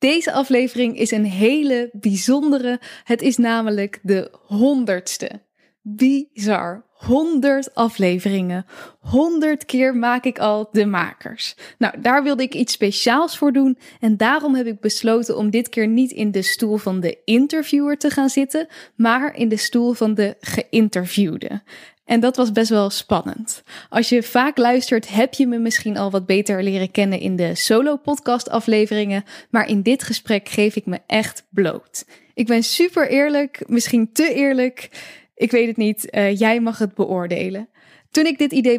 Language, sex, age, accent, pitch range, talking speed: Dutch, female, 10-29, Dutch, 210-260 Hz, 165 wpm